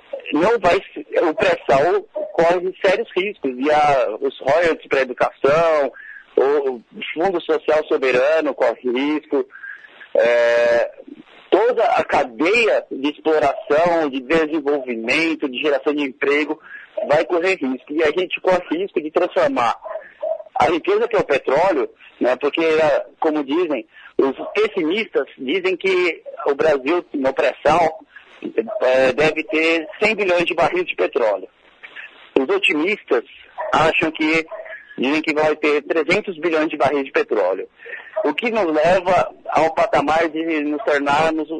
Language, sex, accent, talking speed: Portuguese, male, Brazilian, 135 wpm